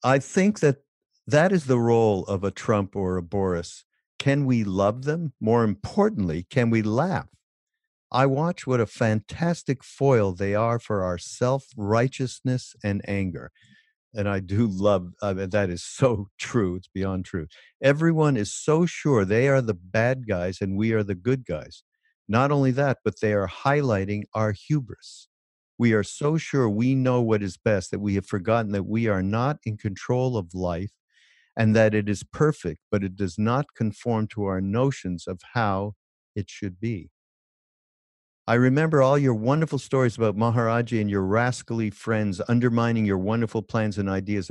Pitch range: 100-130 Hz